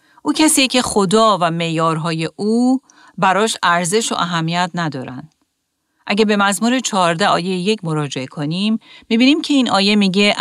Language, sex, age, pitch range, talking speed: Persian, female, 40-59, 165-225 Hz, 145 wpm